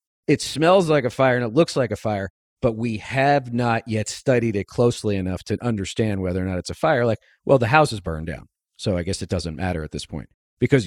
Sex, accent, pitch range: male, American, 95-125 Hz